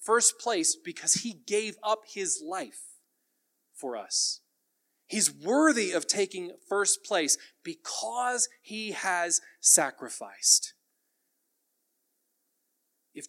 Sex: male